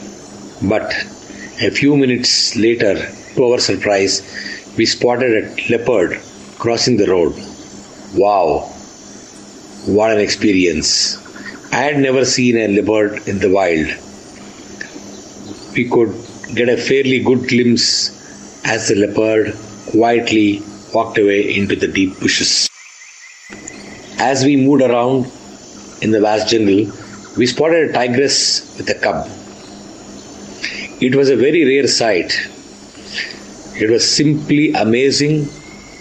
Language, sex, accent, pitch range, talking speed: English, male, Indian, 110-145 Hz, 115 wpm